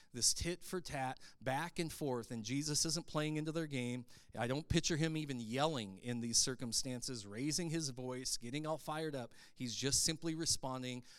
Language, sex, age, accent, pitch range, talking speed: English, male, 40-59, American, 125-165 Hz, 170 wpm